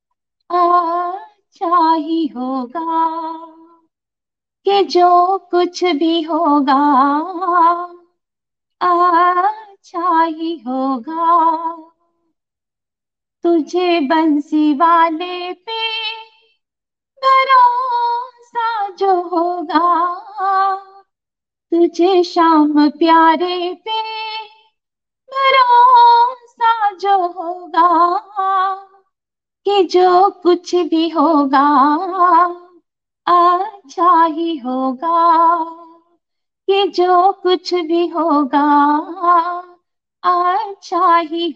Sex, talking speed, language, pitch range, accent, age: female, 55 wpm, Hindi, 330-385 Hz, native, 30-49